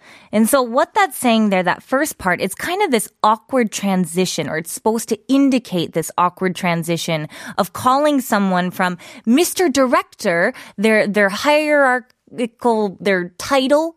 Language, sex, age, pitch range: Korean, female, 20-39, 190-275 Hz